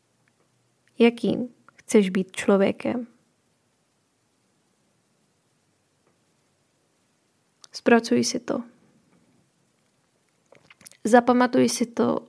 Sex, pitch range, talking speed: female, 220-240 Hz, 50 wpm